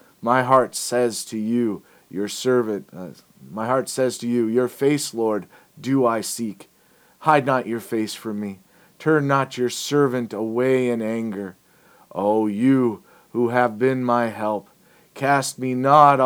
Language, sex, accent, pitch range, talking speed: English, male, American, 110-135 Hz, 155 wpm